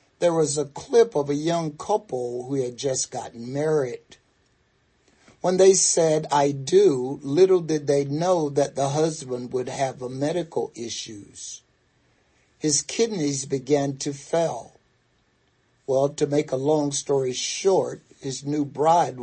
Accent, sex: American, male